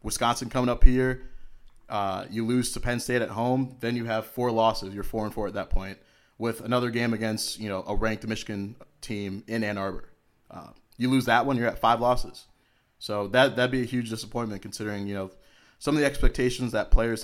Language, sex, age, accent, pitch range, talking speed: English, male, 20-39, American, 100-125 Hz, 225 wpm